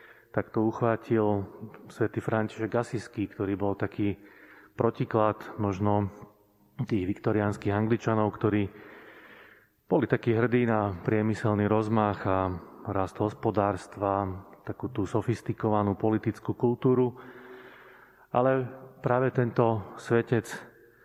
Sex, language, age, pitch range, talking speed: male, Slovak, 30-49, 100-110 Hz, 90 wpm